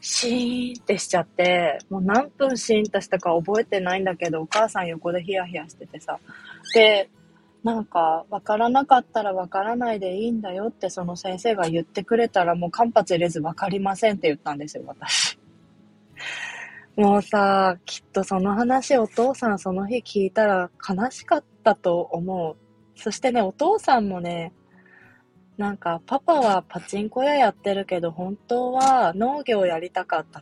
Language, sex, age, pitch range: Japanese, female, 20-39, 170-235 Hz